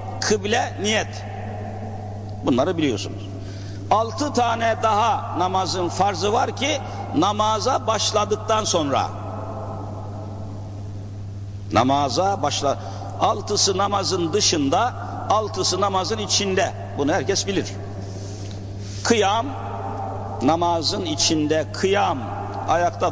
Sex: male